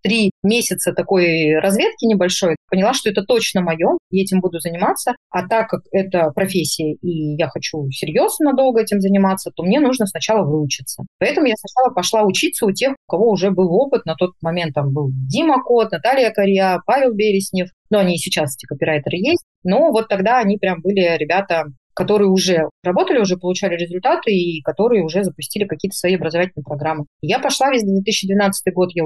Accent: native